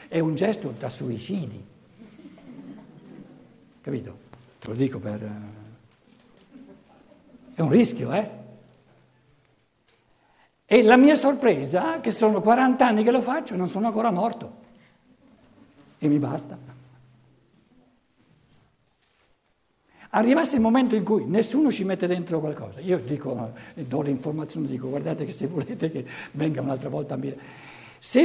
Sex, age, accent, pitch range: male, 60-79, native, 130-215 Hz